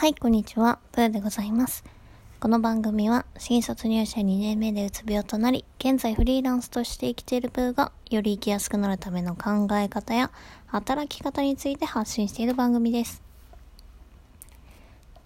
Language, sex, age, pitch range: Japanese, female, 20-39, 190-245 Hz